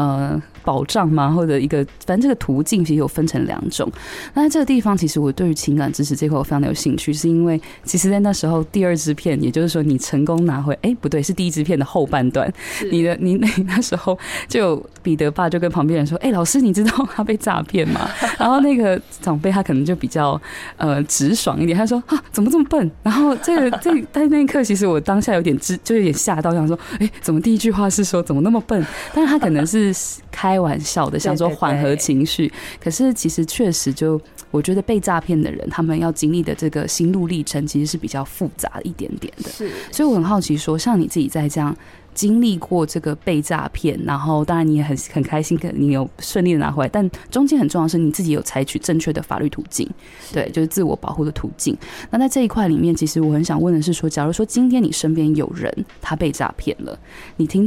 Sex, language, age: female, Chinese, 20-39